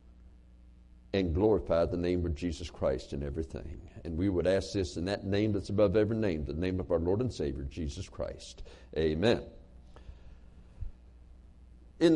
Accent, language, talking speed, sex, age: American, English, 160 wpm, male, 60-79